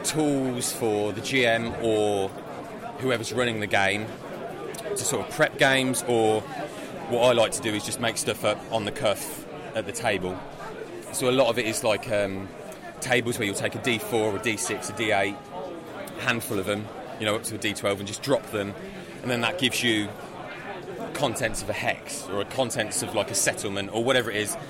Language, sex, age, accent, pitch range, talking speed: English, male, 30-49, British, 105-125 Hz, 200 wpm